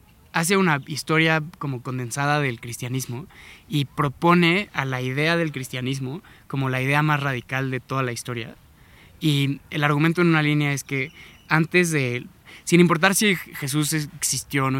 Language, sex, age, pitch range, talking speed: Spanish, male, 20-39, 125-150 Hz, 160 wpm